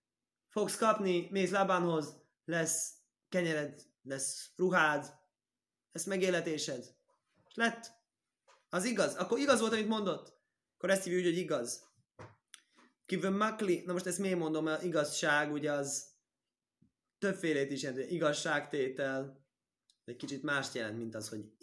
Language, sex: Hungarian, male